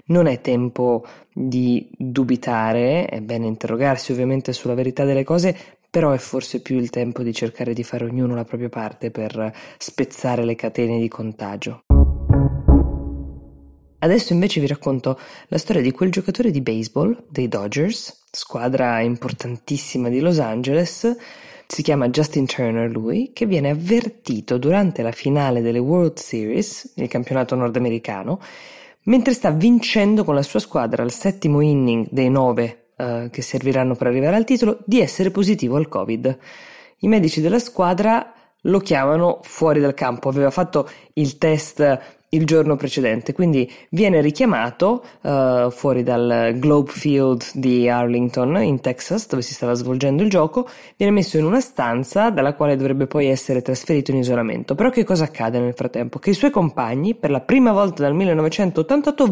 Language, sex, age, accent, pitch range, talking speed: Italian, female, 20-39, native, 120-180 Hz, 155 wpm